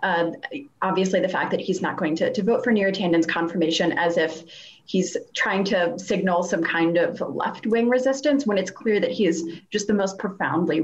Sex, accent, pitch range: female, American, 170-210 Hz